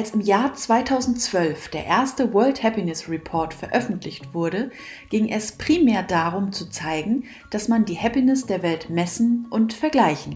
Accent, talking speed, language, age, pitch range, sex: German, 150 wpm, German, 30-49, 175-245 Hz, female